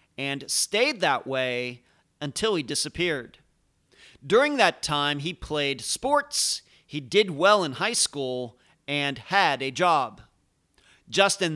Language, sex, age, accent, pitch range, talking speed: English, male, 40-59, American, 145-190 Hz, 125 wpm